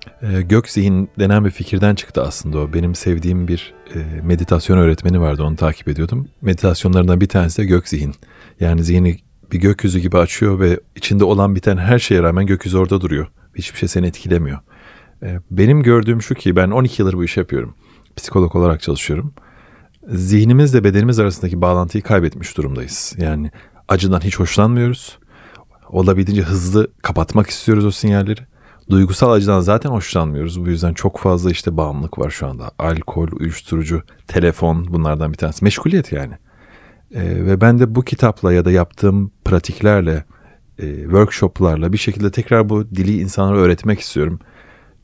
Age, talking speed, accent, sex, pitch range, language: 40-59, 150 wpm, native, male, 85-105 Hz, Turkish